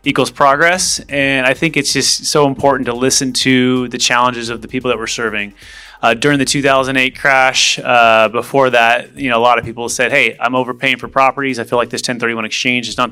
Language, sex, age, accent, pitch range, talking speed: English, male, 30-49, American, 115-135 Hz, 220 wpm